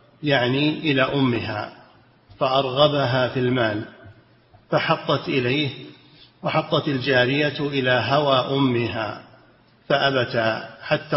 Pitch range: 125-145 Hz